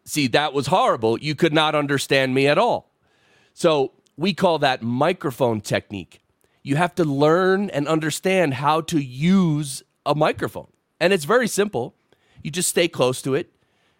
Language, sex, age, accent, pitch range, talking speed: English, male, 30-49, American, 125-160 Hz, 165 wpm